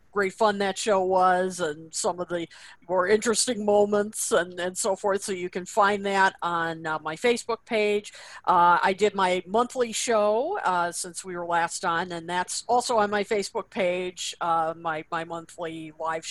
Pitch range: 180-225 Hz